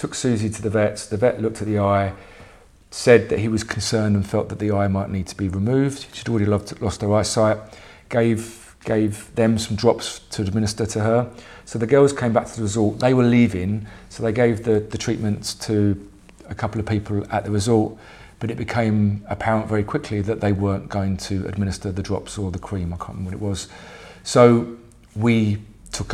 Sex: male